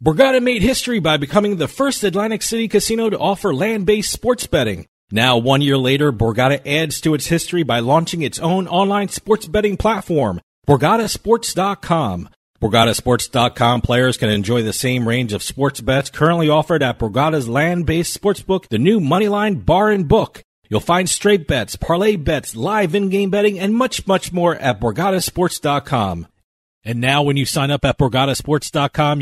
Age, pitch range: 40-59, 125-195 Hz